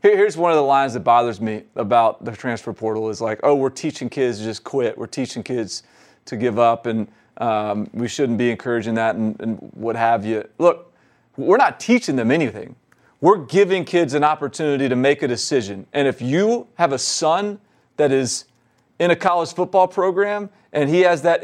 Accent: American